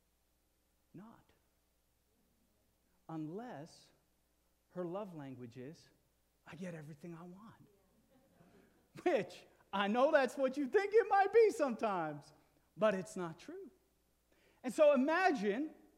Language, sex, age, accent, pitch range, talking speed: English, male, 40-59, American, 125-205 Hz, 110 wpm